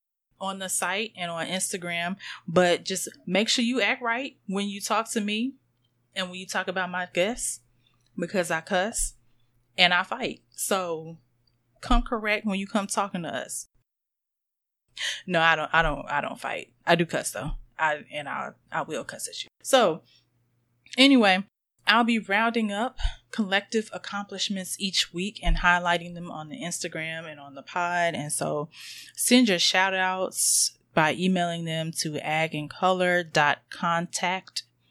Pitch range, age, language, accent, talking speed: 160-210 Hz, 20-39, English, American, 155 wpm